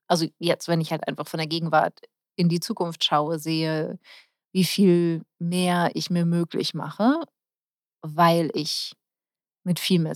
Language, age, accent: German, 30-49, German